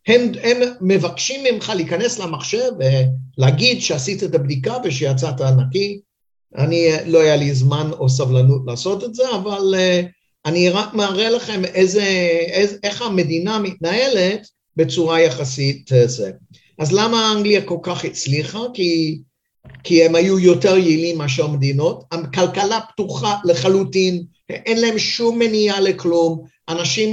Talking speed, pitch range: 135 wpm, 160-215 Hz